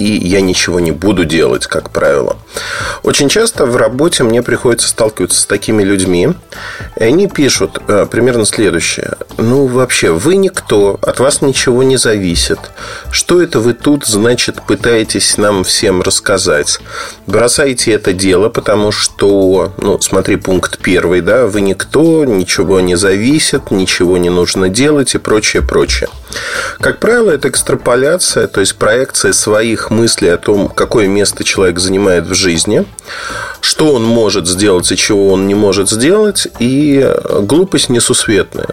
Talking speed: 145 wpm